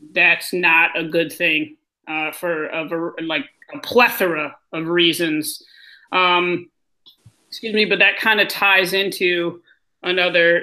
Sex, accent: male, American